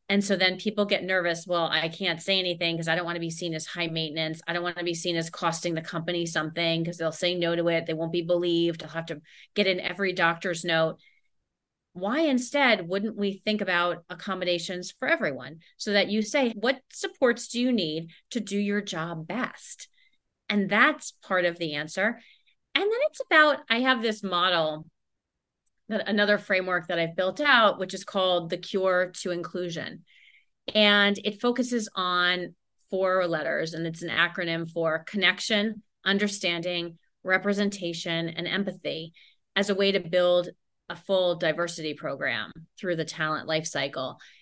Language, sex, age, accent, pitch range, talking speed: English, female, 30-49, American, 165-205 Hz, 175 wpm